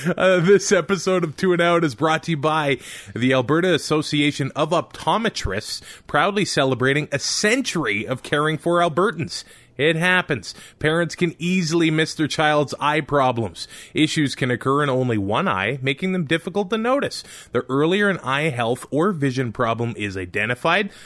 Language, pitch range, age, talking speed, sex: English, 130-175 Hz, 20-39, 160 wpm, male